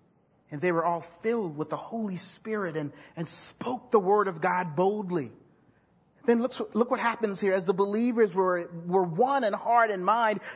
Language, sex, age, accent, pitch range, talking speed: English, male, 40-59, American, 225-315 Hz, 190 wpm